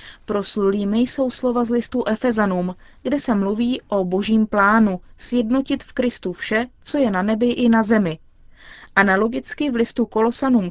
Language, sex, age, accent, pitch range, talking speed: Czech, female, 30-49, native, 200-250 Hz, 150 wpm